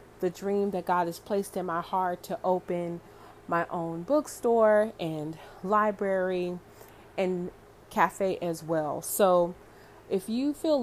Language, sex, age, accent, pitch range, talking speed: English, female, 30-49, American, 170-205 Hz, 135 wpm